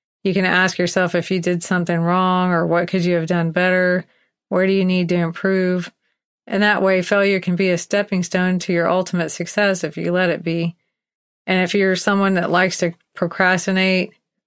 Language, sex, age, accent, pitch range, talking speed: English, female, 30-49, American, 170-190 Hz, 200 wpm